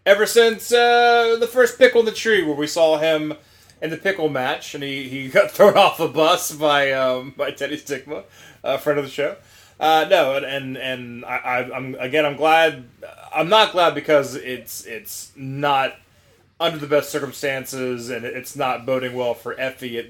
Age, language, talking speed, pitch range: 20-39, English, 195 wpm, 120-155 Hz